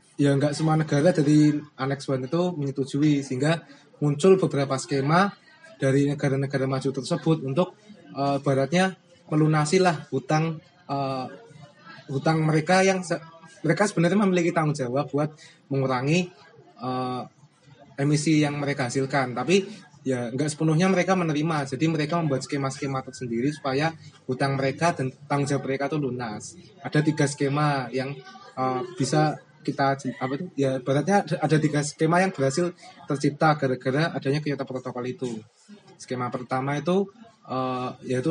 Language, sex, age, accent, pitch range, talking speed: Indonesian, male, 20-39, native, 135-165 Hz, 135 wpm